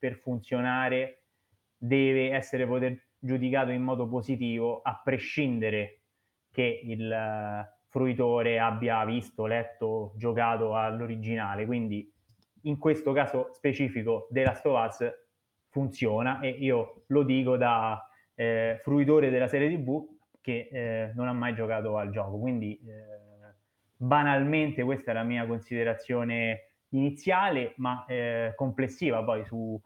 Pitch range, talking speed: 110-130 Hz, 120 wpm